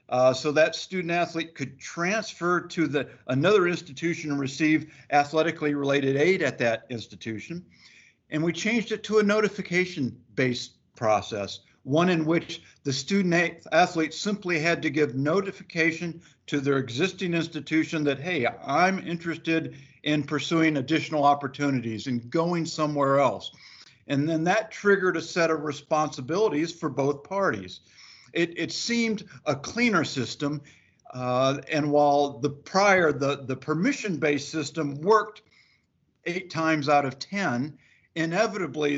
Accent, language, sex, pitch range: American, English, male, 140-170 Hz